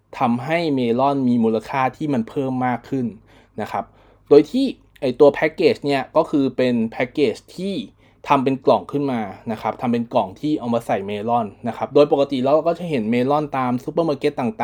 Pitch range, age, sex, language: 115-145 Hz, 20-39, male, Thai